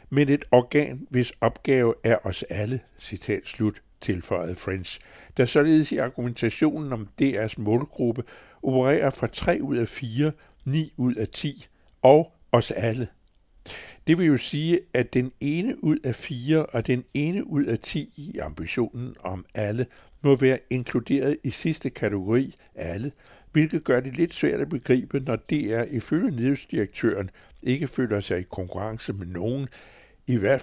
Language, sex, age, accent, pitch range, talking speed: Danish, male, 60-79, American, 105-140 Hz, 155 wpm